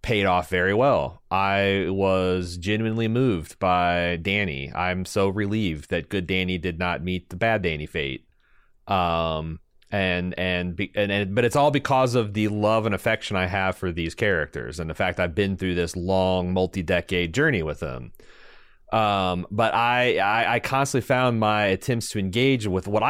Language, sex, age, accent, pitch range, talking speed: English, male, 30-49, American, 90-115 Hz, 175 wpm